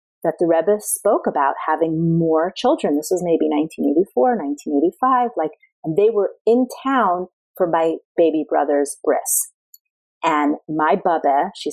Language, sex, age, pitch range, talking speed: English, female, 30-49, 160-230 Hz, 145 wpm